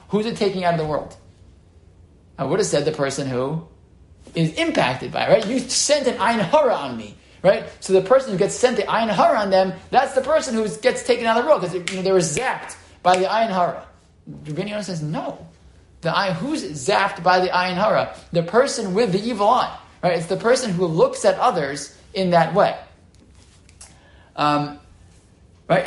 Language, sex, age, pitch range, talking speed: English, male, 20-39, 150-215 Hz, 195 wpm